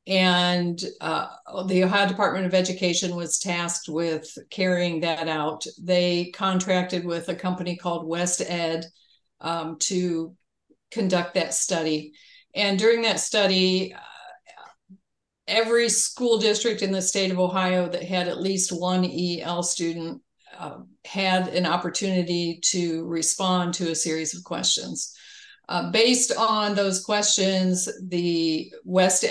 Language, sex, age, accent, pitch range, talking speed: English, female, 50-69, American, 175-195 Hz, 130 wpm